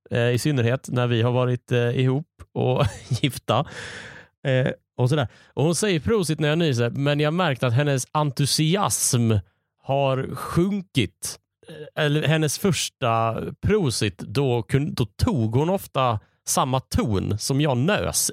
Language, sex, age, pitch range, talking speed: Swedish, male, 30-49, 115-150 Hz, 130 wpm